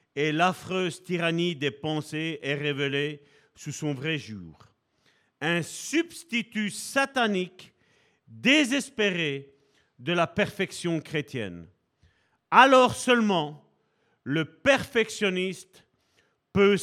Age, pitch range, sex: 50-69, 145-220 Hz, male